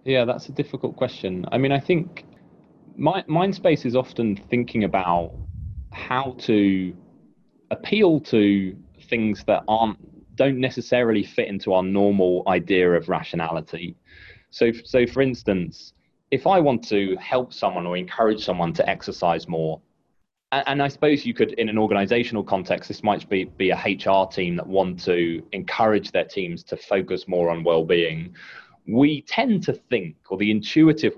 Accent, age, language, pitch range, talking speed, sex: British, 20-39, English, 90-130 Hz, 160 wpm, male